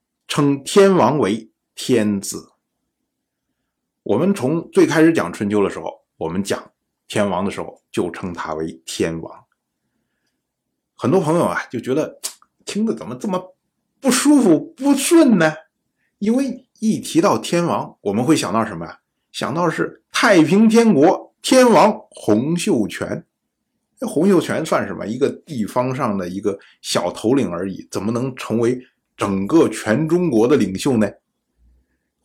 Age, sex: 50-69, male